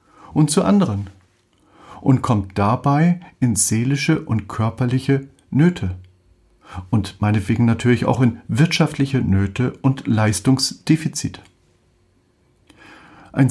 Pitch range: 100-140 Hz